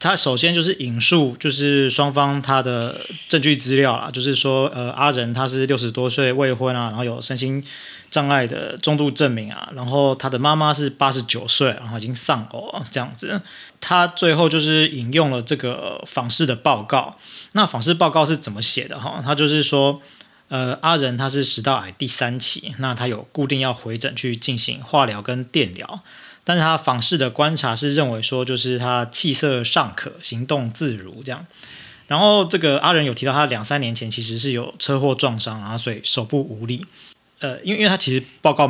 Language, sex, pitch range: Chinese, male, 125-150 Hz